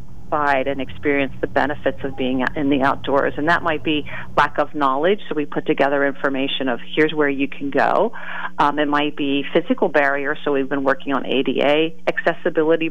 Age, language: 40-59, English